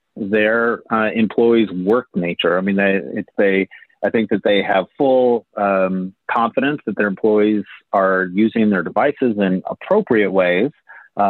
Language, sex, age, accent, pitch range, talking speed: English, male, 30-49, American, 95-110 Hz, 155 wpm